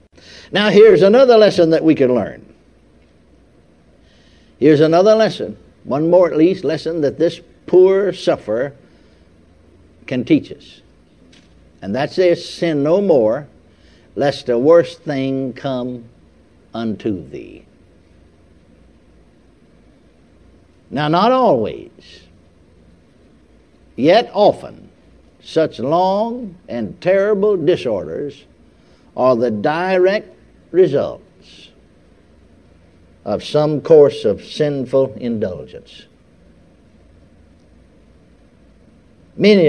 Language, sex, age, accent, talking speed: English, male, 60-79, American, 85 wpm